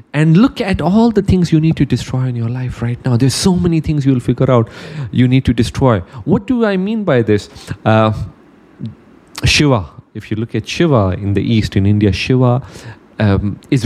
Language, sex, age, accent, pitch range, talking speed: English, male, 30-49, Indian, 120-165 Hz, 205 wpm